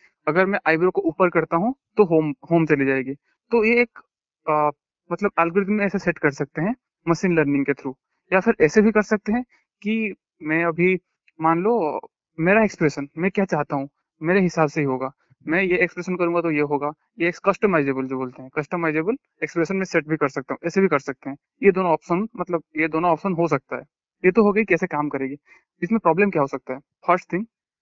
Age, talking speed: 20-39, 215 wpm